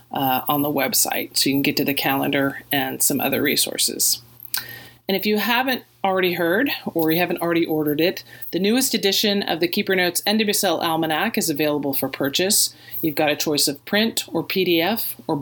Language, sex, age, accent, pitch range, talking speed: English, female, 30-49, American, 150-200 Hz, 190 wpm